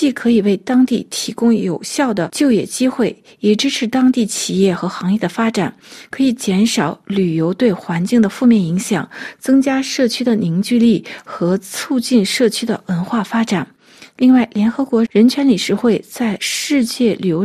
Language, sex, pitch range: Chinese, female, 200-250 Hz